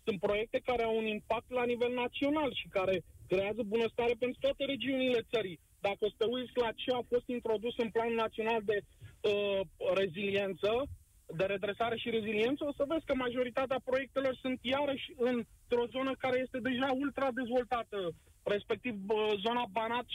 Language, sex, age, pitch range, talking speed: Romanian, male, 20-39, 225-260 Hz, 160 wpm